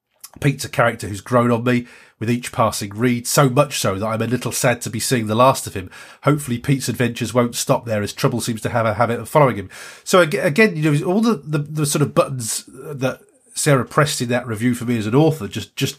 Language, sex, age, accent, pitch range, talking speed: English, male, 30-49, British, 115-145 Hz, 250 wpm